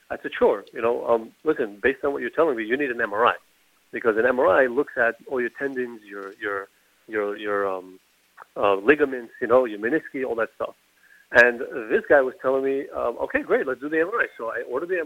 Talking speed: 225 wpm